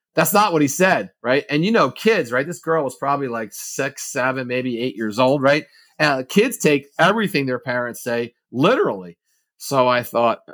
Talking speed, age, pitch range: 195 wpm, 40-59, 115-165 Hz